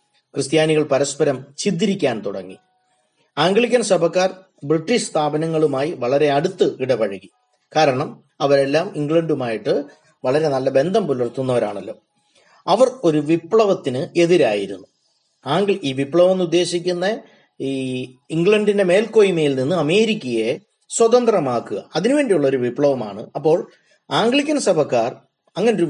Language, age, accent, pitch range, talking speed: Malayalam, 30-49, native, 140-200 Hz, 90 wpm